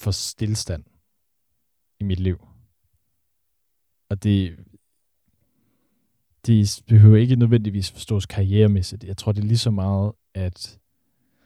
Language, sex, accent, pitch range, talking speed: Danish, male, native, 90-105 Hz, 110 wpm